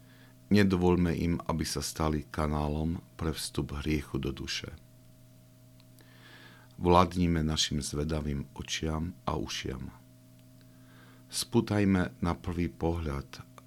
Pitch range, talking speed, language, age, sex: 65-85 Hz, 90 wpm, Slovak, 50-69, male